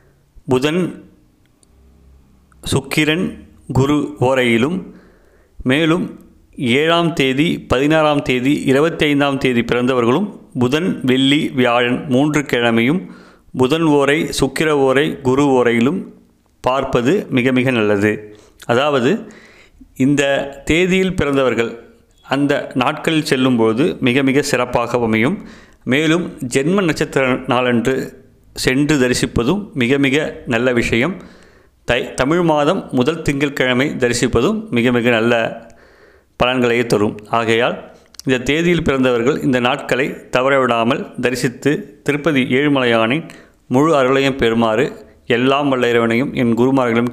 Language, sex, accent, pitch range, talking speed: Tamil, male, native, 120-145 Hz, 95 wpm